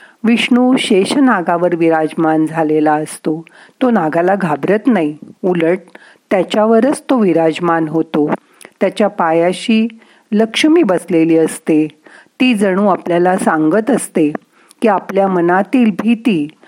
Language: Marathi